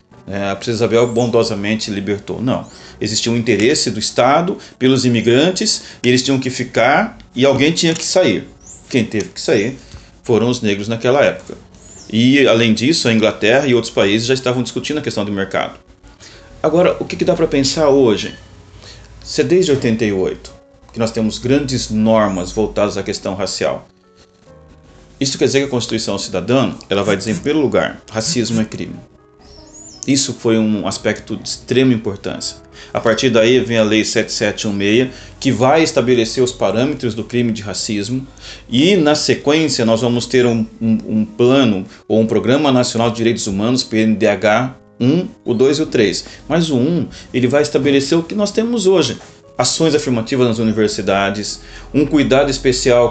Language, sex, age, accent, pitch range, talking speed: Portuguese, male, 40-59, Brazilian, 105-130 Hz, 165 wpm